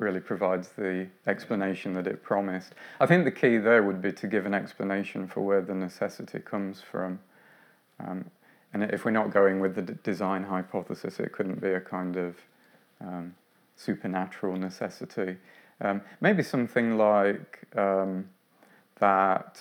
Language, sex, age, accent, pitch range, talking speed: English, male, 40-59, British, 95-105 Hz, 150 wpm